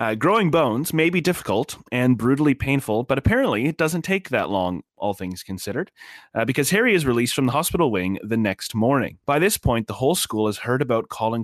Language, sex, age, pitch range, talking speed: English, male, 30-49, 105-130 Hz, 215 wpm